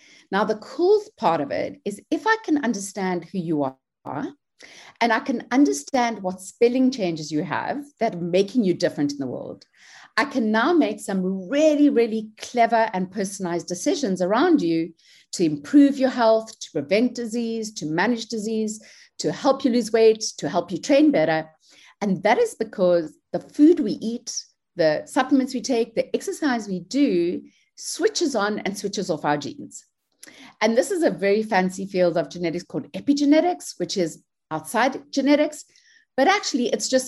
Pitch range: 175-270 Hz